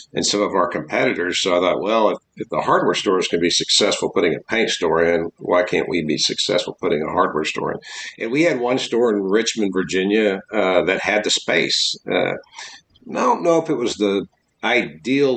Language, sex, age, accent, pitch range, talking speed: English, male, 50-69, American, 90-120 Hz, 210 wpm